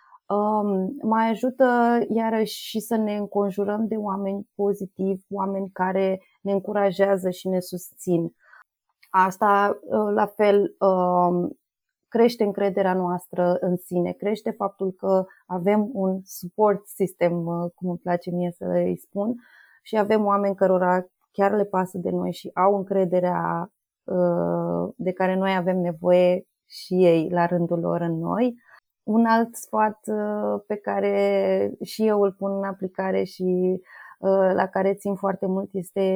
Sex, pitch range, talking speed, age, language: female, 180-205 Hz, 135 wpm, 20-39, Romanian